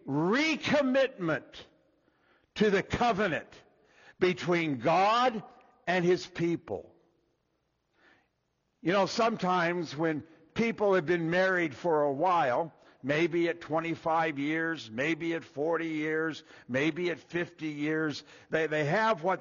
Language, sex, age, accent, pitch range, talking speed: English, male, 60-79, American, 160-205 Hz, 110 wpm